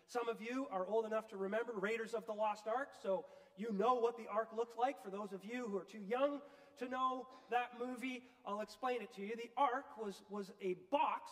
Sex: male